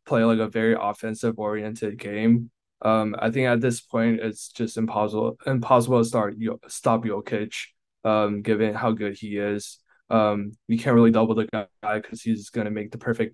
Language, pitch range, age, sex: Chinese, 105-115 Hz, 10-29, male